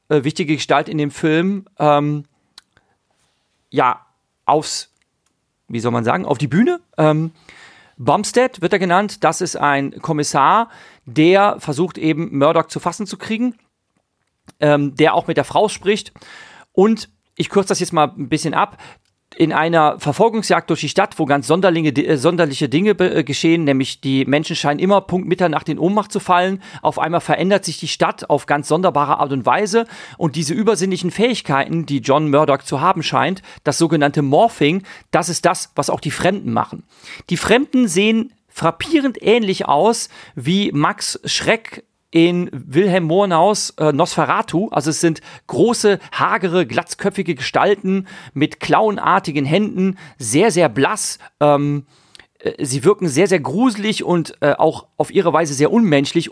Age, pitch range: 40-59, 150-195 Hz